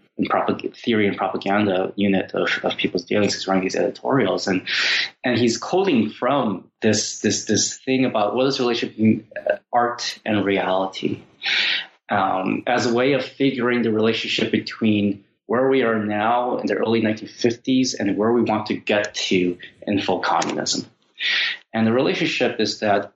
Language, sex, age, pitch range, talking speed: English, male, 30-49, 105-125 Hz, 160 wpm